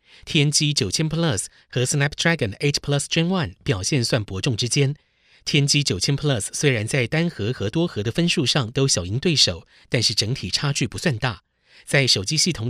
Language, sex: Chinese, male